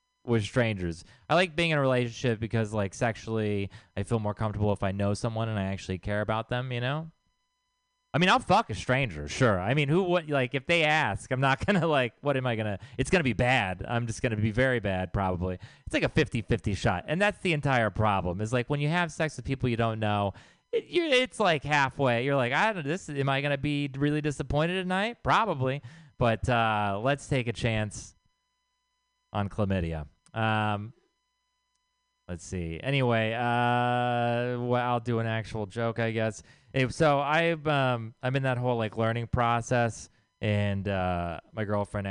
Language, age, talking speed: English, 30-49, 205 wpm